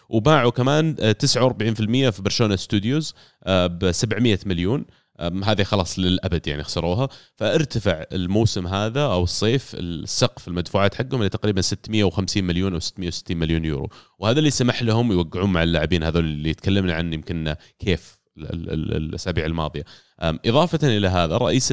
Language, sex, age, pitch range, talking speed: Arabic, male, 30-49, 85-115 Hz, 135 wpm